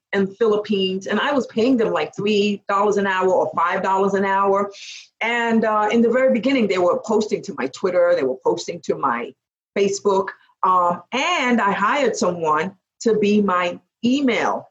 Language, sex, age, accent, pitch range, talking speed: English, female, 50-69, American, 190-235 Hz, 170 wpm